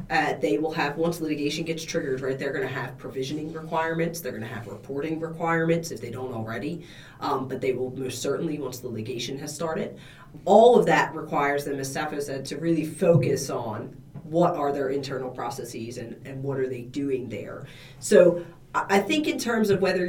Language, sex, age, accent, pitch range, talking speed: English, female, 40-59, American, 130-160 Hz, 205 wpm